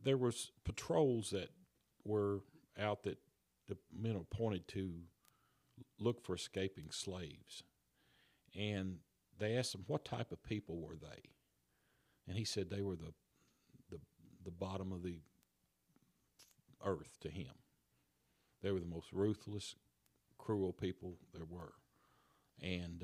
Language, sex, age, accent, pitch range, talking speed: English, male, 50-69, American, 85-105 Hz, 125 wpm